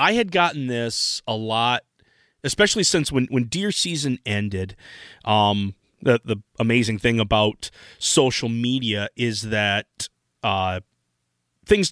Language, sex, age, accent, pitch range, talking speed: English, male, 30-49, American, 105-140 Hz, 125 wpm